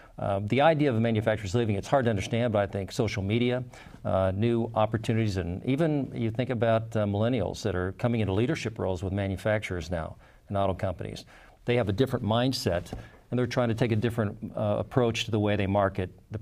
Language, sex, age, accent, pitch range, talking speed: English, male, 50-69, American, 100-120 Hz, 210 wpm